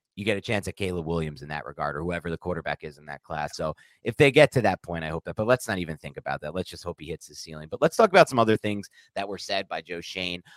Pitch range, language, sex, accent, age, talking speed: 85-120 Hz, English, male, American, 30-49, 310 wpm